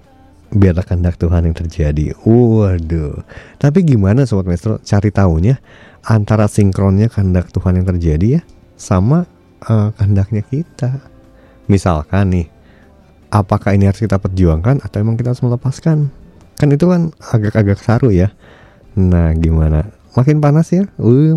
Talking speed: 130 wpm